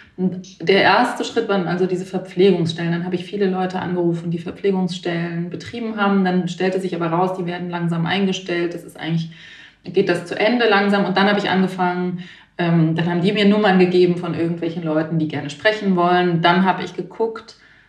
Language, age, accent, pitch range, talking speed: German, 30-49, German, 160-180 Hz, 190 wpm